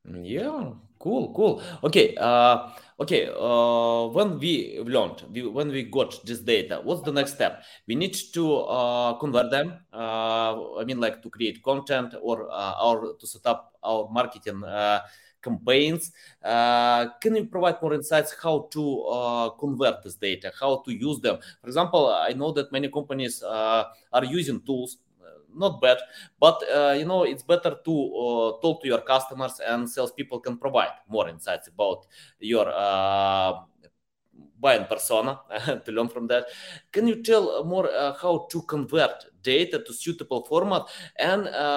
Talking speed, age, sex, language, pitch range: 160 wpm, 20-39, male, English, 120-155 Hz